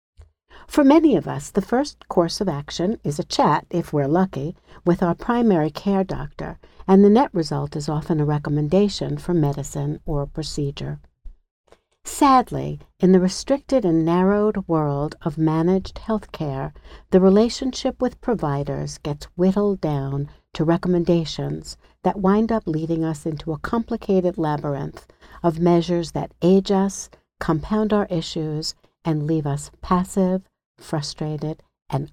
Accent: American